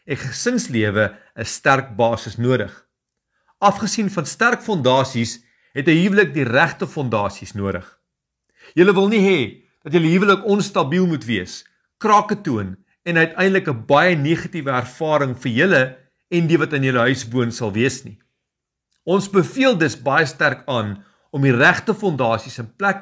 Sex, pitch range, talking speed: male, 120-185 Hz, 155 wpm